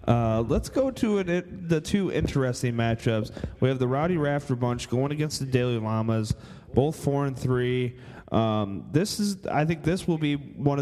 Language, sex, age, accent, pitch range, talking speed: English, male, 30-49, American, 115-135 Hz, 190 wpm